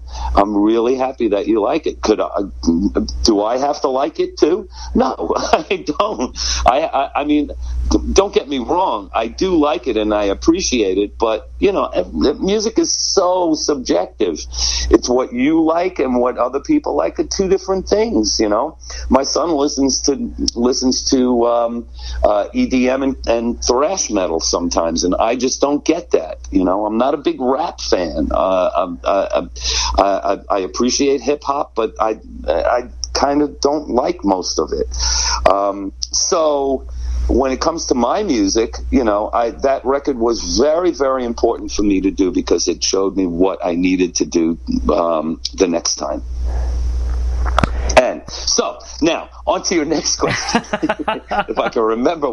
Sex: male